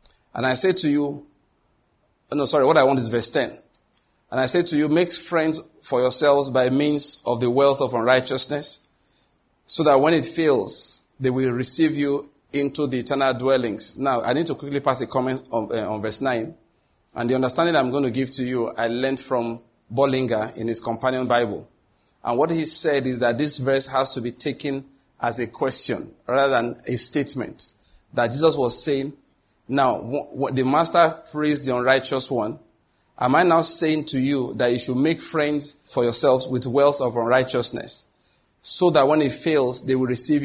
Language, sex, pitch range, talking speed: English, male, 125-145 Hz, 190 wpm